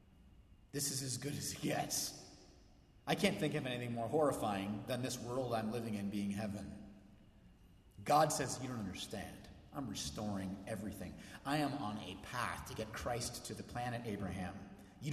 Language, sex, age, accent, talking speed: English, male, 30-49, American, 170 wpm